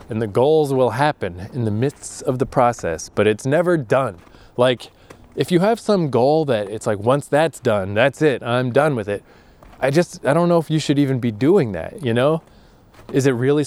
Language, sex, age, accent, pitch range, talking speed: English, male, 20-39, American, 110-145 Hz, 220 wpm